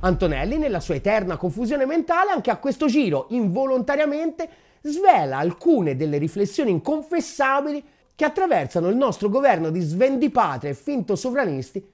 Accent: native